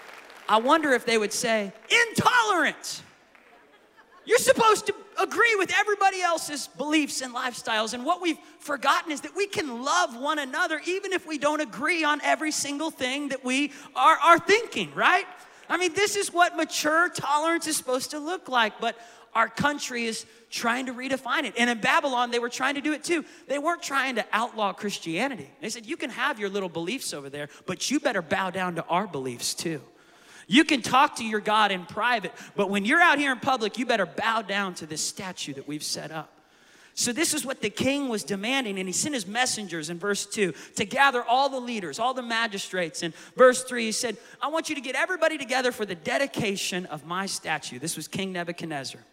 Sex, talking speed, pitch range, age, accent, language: male, 210 wpm, 200-305 Hz, 30-49, American, English